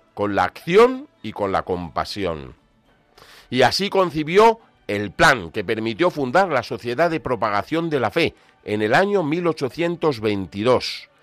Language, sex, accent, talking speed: Spanish, male, Spanish, 140 wpm